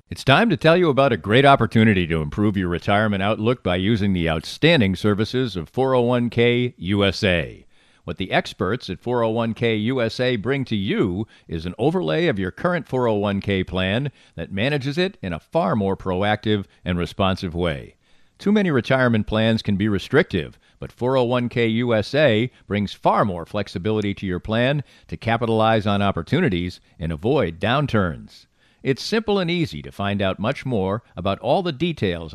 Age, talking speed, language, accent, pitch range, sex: 50-69, 160 wpm, English, American, 100-140 Hz, male